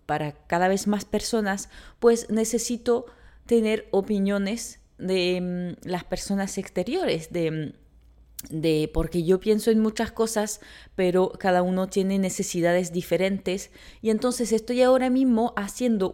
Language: Spanish